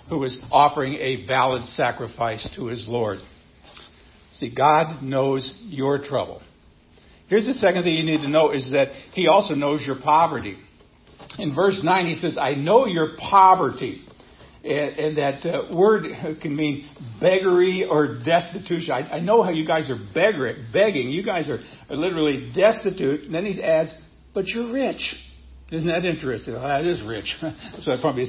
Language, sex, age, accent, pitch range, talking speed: English, male, 60-79, American, 135-175 Hz, 160 wpm